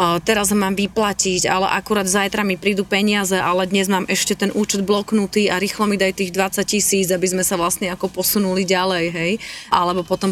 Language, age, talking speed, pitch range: Slovak, 20-39, 190 wpm, 180-210 Hz